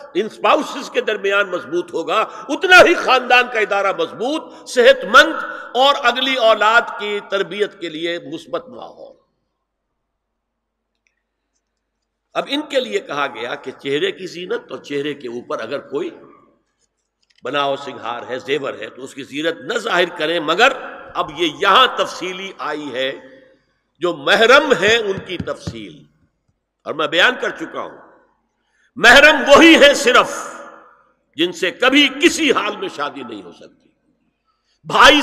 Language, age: Urdu, 60-79